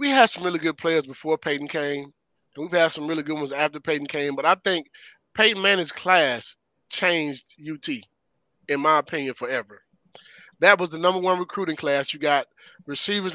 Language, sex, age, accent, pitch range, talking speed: English, male, 30-49, American, 145-185 Hz, 185 wpm